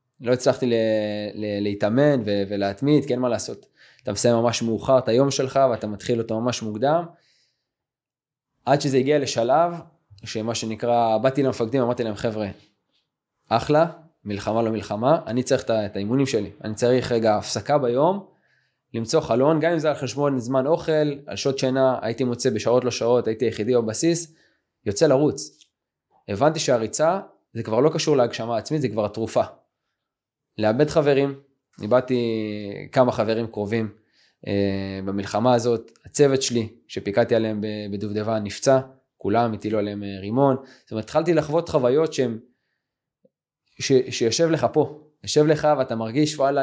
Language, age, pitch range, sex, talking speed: Hebrew, 20-39, 115-145 Hz, male, 145 wpm